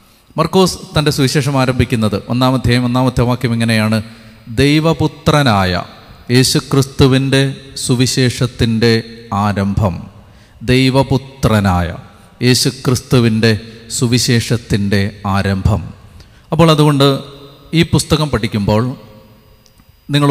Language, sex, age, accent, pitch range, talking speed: Malayalam, male, 30-49, native, 110-140 Hz, 65 wpm